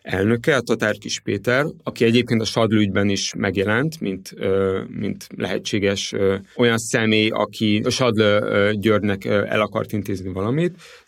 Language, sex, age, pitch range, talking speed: Hungarian, male, 30-49, 100-120 Hz, 130 wpm